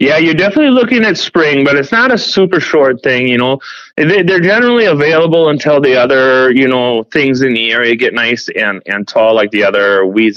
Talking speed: 210 wpm